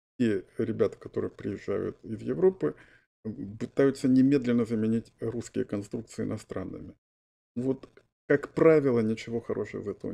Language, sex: Russian, male